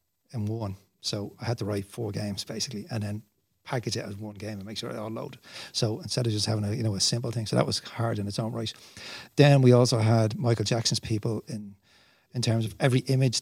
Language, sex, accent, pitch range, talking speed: English, male, Irish, 110-125 Hz, 245 wpm